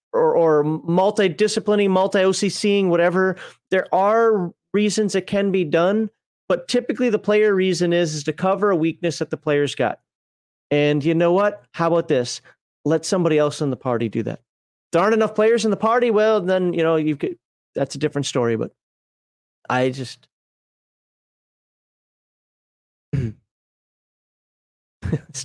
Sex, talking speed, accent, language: male, 150 wpm, American, English